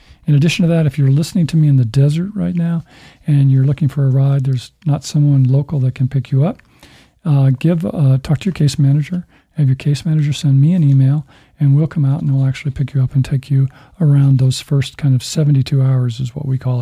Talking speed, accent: 245 wpm, American